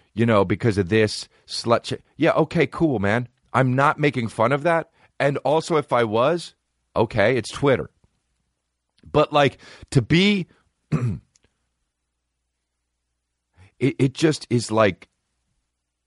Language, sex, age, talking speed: English, male, 40-59, 125 wpm